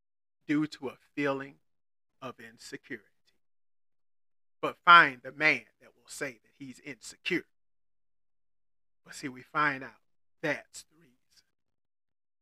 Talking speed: 115 wpm